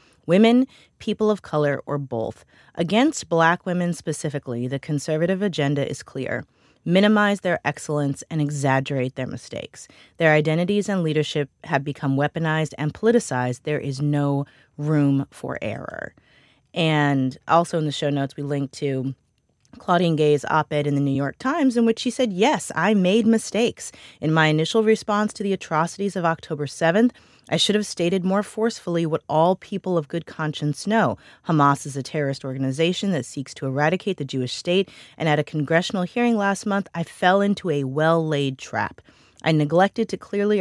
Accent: American